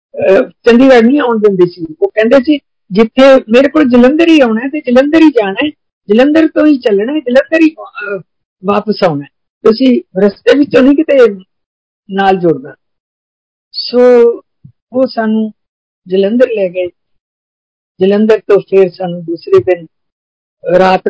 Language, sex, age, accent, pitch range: Hindi, female, 50-69, native, 200-260 Hz